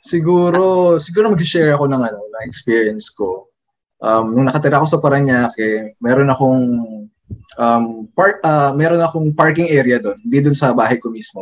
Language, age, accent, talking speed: Filipino, 20-39, native, 165 wpm